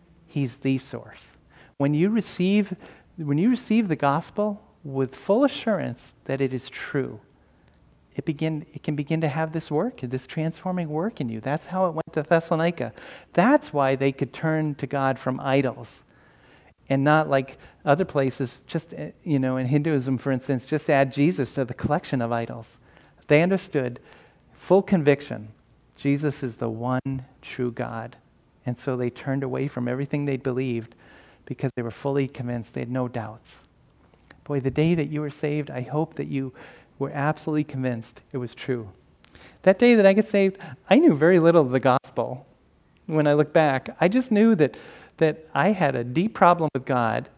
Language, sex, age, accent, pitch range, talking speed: German, male, 40-59, American, 125-160 Hz, 180 wpm